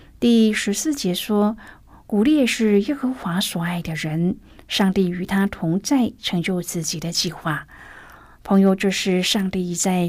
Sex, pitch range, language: female, 180-230 Hz, Chinese